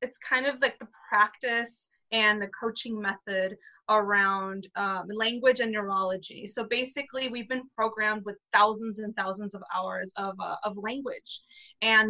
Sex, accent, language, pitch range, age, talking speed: female, American, English, 200-225 Hz, 20-39, 155 wpm